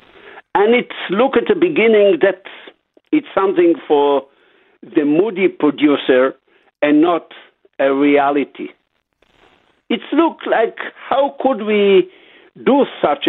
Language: English